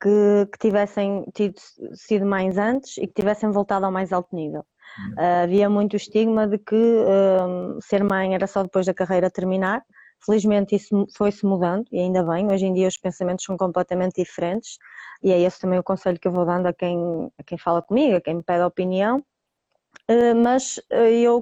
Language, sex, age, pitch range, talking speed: Portuguese, female, 20-39, 190-255 Hz, 195 wpm